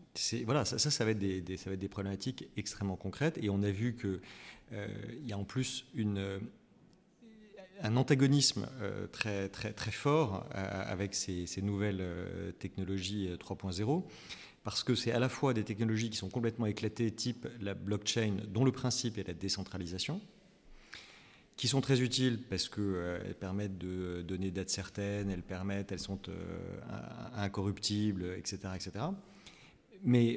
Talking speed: 170 wpm